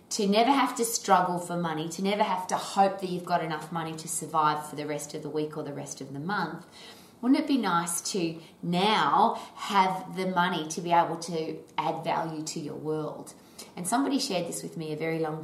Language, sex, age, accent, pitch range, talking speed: English, female, 20-39, Australian, 155-205 Hz, 225 wpm